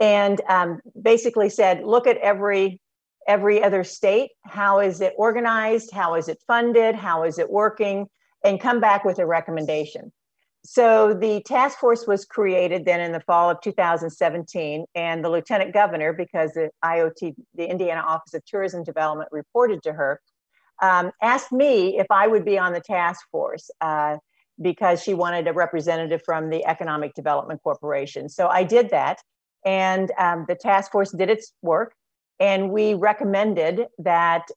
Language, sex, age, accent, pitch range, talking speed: English, female, 50-69, American, 170-210 Hz, 165 wpm